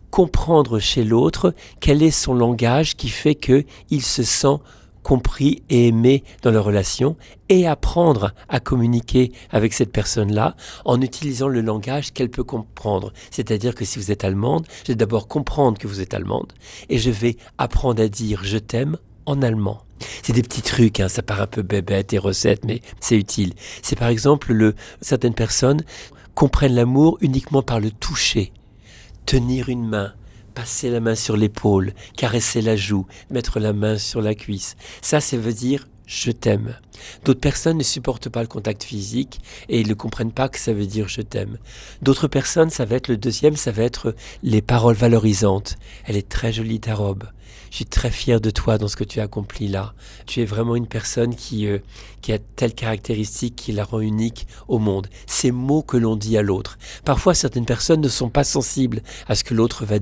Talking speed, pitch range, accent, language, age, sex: 200 wpm, 105-125 Hz, French, French, 50-69, male